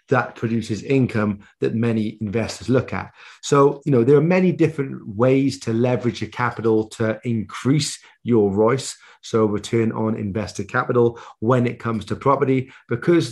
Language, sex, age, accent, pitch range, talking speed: English, male, 30-49, British, 110-130 Hz, 160 wpm